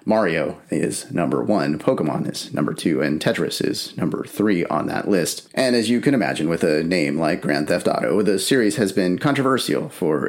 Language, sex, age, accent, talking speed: English, male, 30-49, American, 200 wpm